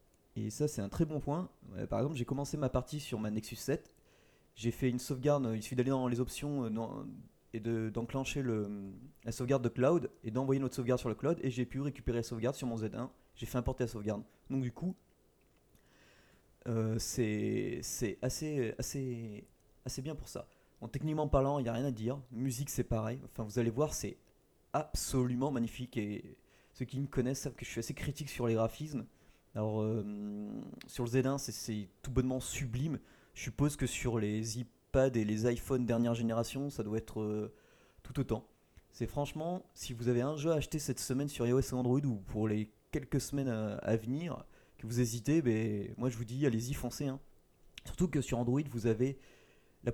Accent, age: French, 30-49